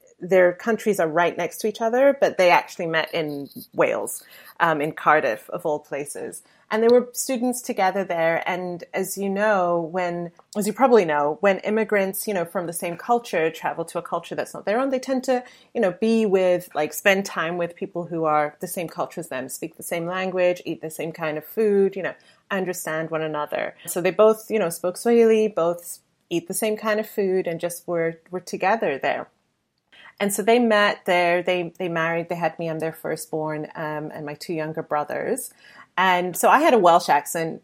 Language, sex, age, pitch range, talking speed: English, female, 30-49, 165-215 Hz, 210 wpm